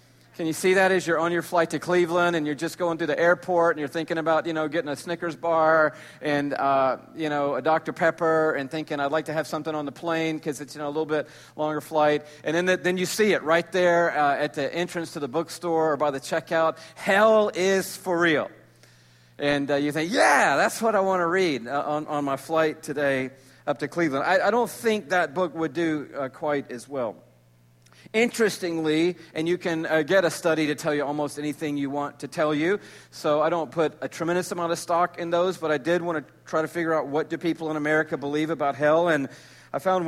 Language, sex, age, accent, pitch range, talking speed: English, male, 50-69, American, 150-175 Hz, 235 wpm